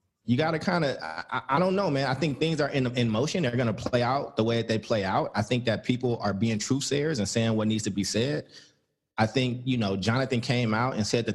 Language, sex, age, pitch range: English, male, 20-39, 110-145 Hz